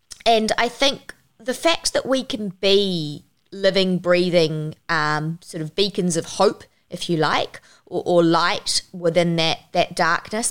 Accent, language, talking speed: Australian, English, 155 wpm